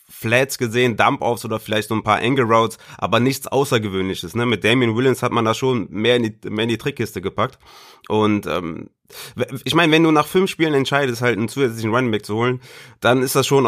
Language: German